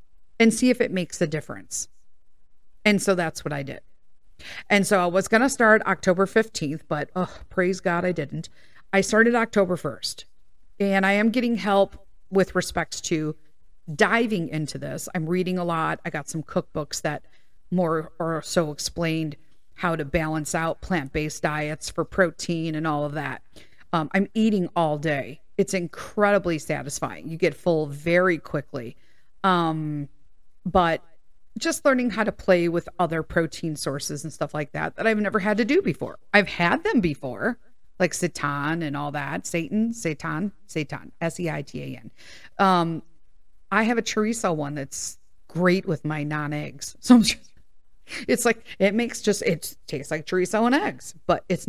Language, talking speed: English, 165 wpm